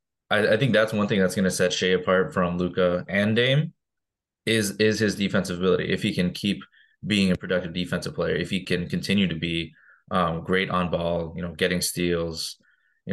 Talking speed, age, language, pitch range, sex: 195 wpm, 20-39, English, 85-100 Hz, male